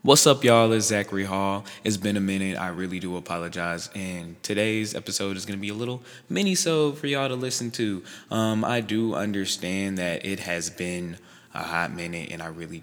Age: 20-39